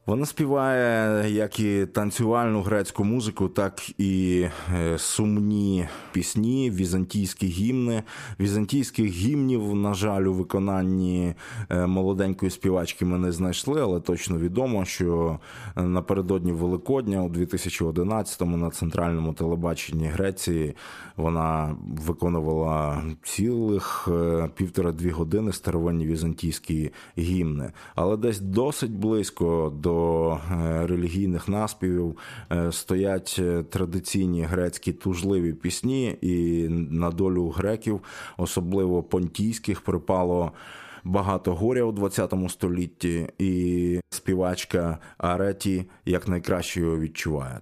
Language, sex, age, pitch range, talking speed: Ukrainian, male, 20-39, 85-100 Hz, 95 wpm